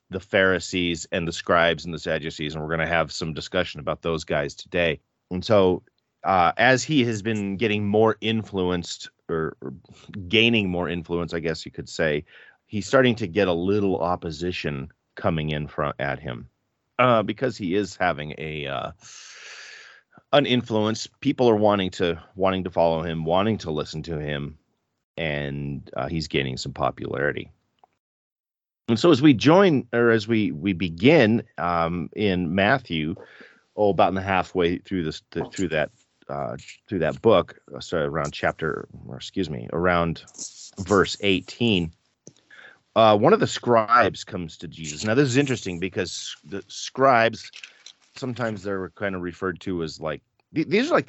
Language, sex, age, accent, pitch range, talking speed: English, male, 40-59, American, 80-105 Hz, 165 wpm